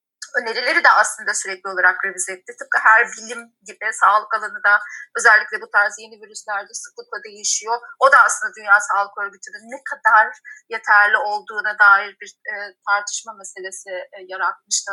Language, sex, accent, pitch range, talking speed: Turkish, female, native, 215-335 Hz, 155 wpm